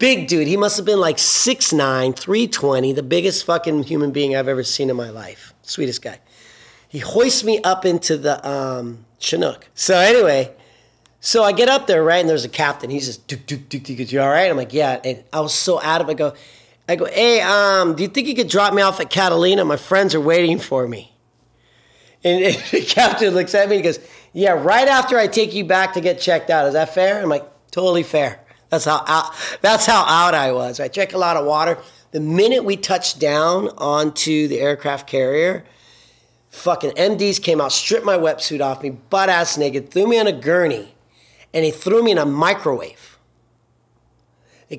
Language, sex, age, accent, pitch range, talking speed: English, male, 30-49, American, 145-200 Hz, 200 wpm